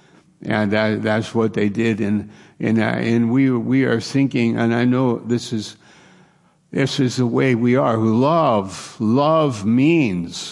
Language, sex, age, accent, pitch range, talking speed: English, male, 60-79, American, 120-145 Hz, 160 wpm